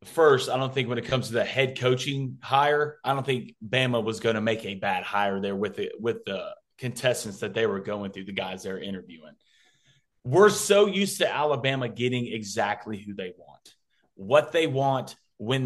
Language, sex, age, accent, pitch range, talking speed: English, male, 30-49, American, 115-140 Hz, 205 wpm